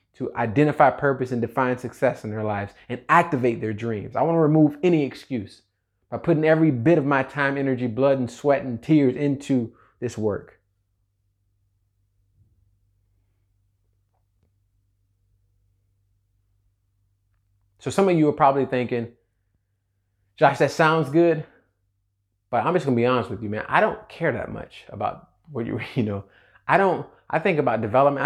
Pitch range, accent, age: 100-140 Hz, American, 30-49